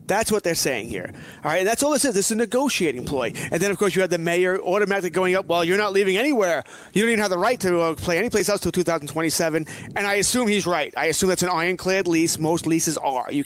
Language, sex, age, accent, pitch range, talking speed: English, male, 30-49, American, 160-205 Hz, 275 wpm